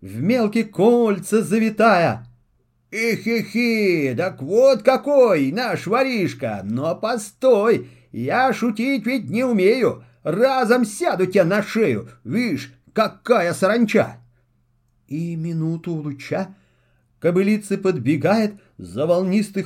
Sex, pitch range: male, 150-225 Hz